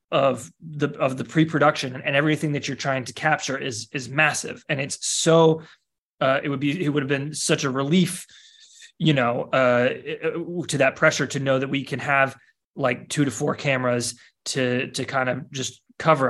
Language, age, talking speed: English, 20-39, 190 wpm